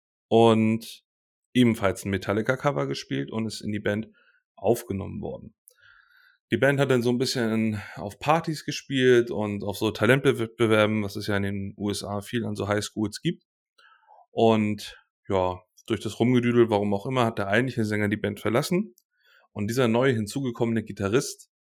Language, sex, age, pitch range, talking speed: German, male, 30-49, 105-140 Hz, 155 wpm